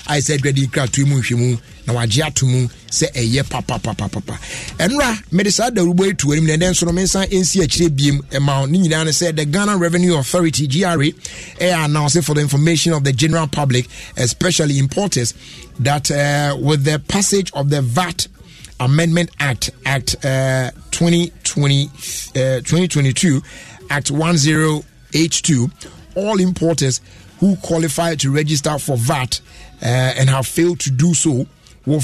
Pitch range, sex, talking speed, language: 135-170 Hz, male, 150 wpm, English